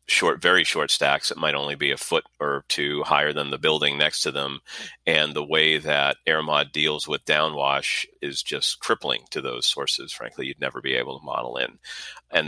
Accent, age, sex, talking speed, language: American, 40-59, male, 200 wpm, English